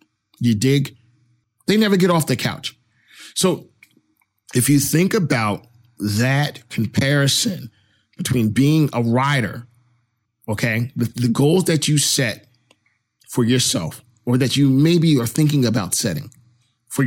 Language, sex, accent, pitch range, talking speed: English, male, American, 120-165 Hz, 130 wpm